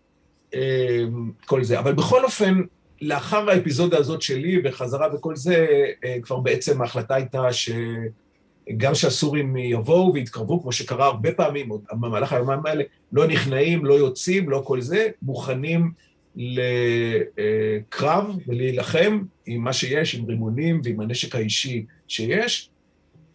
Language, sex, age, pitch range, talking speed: Hebrew, male, 50-69, 120-160 Hz, 120 wpm